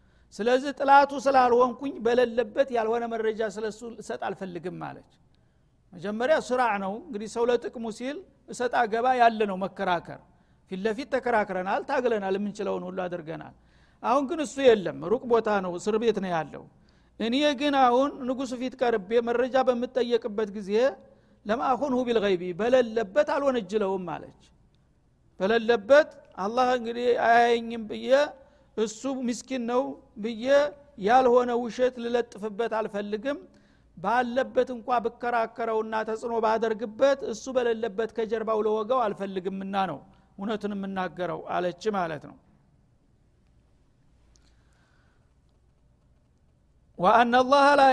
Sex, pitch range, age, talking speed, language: male, 200-255 Hz, 50-69, 85 wpm, Amharic